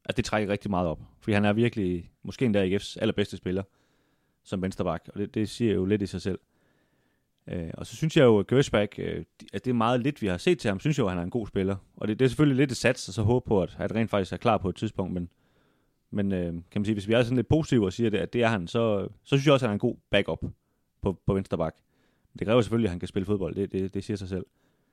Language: Danish